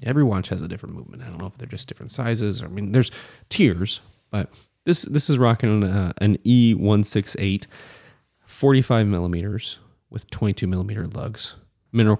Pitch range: 95-120 Hz